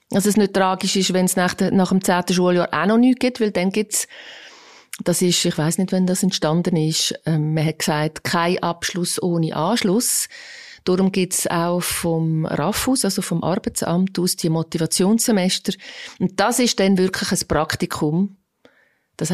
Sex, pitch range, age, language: female, 165-210 Hz, 30-49, German